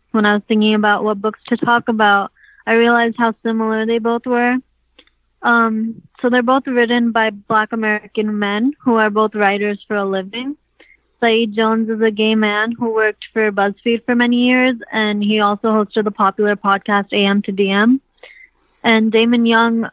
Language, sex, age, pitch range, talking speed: English, female, 20-39, 210-230 Hz, 180 wpm